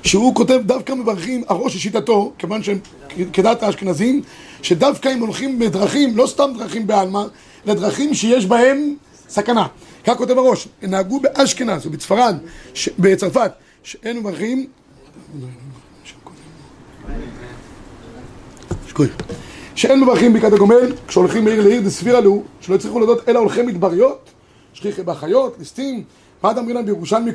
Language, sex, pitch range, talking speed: Hebrew, male, 190-245 Hz, 125 wpm